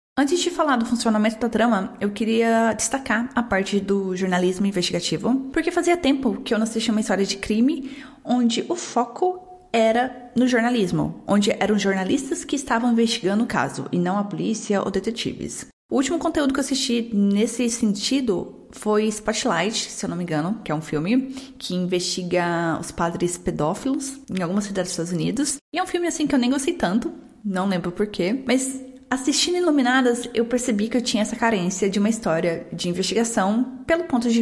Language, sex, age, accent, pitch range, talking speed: Portuguese, female, 20-39, Brazilian, 195-260 Hz, 190 wpm